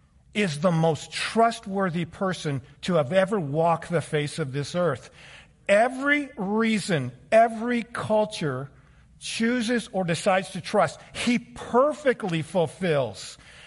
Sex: male